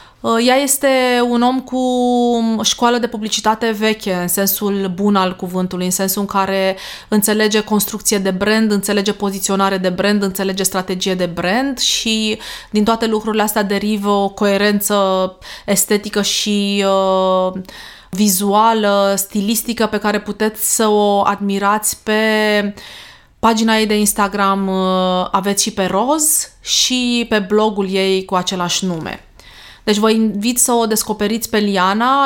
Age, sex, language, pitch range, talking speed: 20-39, female, Romanian, 195-235 Hz, 135 wpm